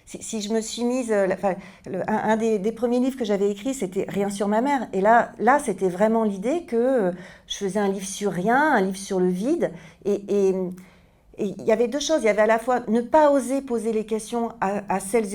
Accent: French